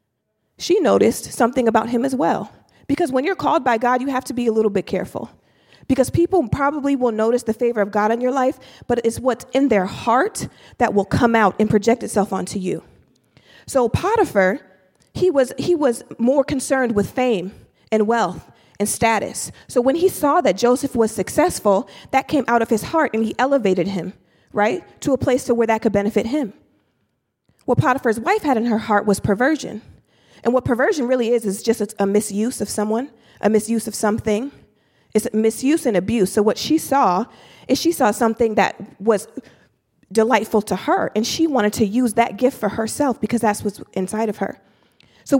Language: English